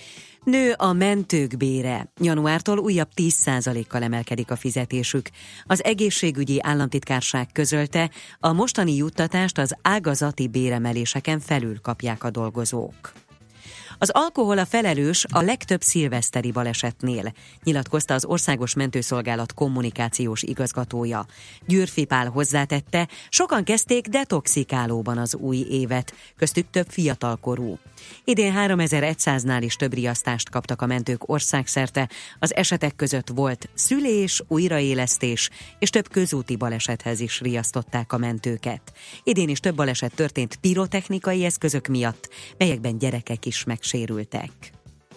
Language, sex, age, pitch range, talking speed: Hungarian, female, 30-49, 120-170 Hz, 115 wpm